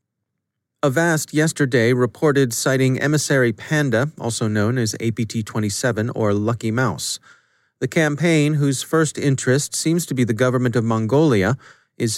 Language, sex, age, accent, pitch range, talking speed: English, male, 30-49, American, 110-135 Hz, 135 wpm